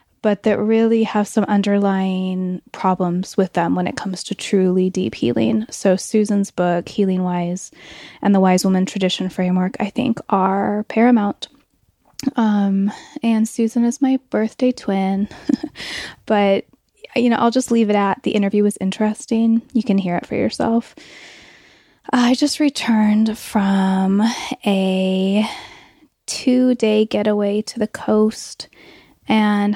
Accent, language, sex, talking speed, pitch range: American, English, female, 135 wpm, 195-225 Hz